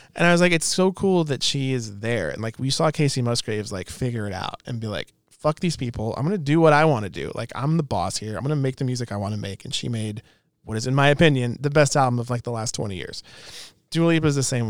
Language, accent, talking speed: English, American, 300 wpm